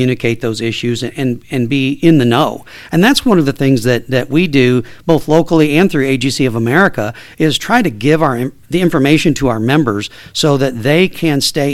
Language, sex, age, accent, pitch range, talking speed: English, male, 50-69, American, 120-150 Hz, 210 wpm